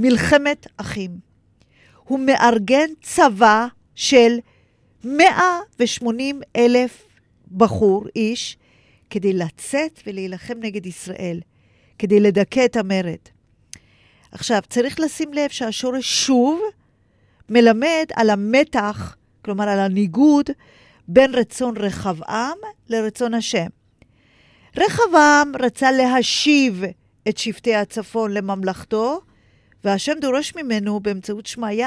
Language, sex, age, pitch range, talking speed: Hebrew, female, 40-59, 200-270 Hz, 90 wpm